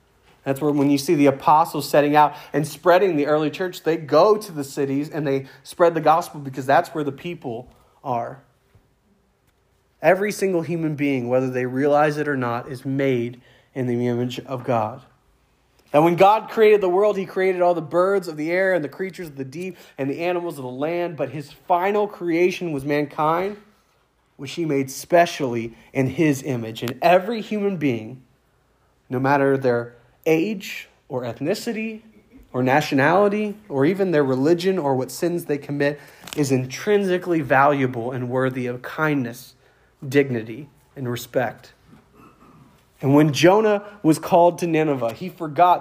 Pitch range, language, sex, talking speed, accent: 130-170 Hz, English, male, 165 wpm, American